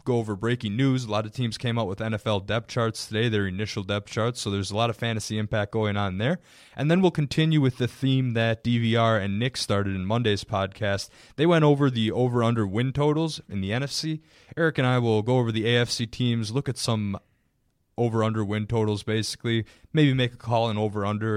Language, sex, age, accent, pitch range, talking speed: English, male, 20-39, American, 105-135 Hz, 215 wpm